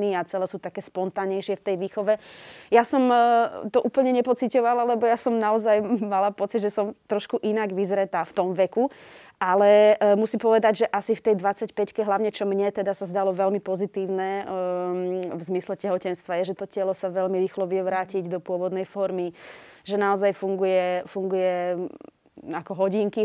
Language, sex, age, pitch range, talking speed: Slovak, female, 20-39, 185-205 Hz, 165 wpm